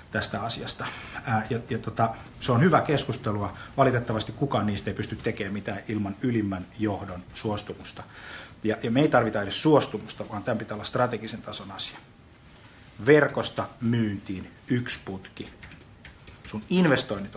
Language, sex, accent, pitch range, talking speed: Finnish, male, native, 105-135 Hz, 140 wpm